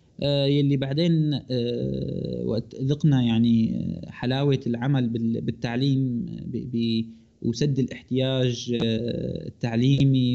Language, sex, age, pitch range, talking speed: Arabic, male, 20-39, 120-135 Hz, 60 wpm